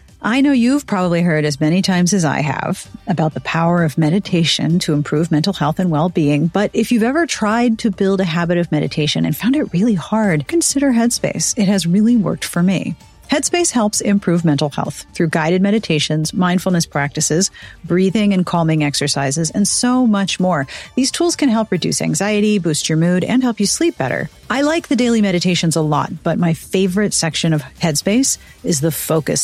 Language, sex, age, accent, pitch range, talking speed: English, female, 40-59, American, 165-230 Hz, 195 wpm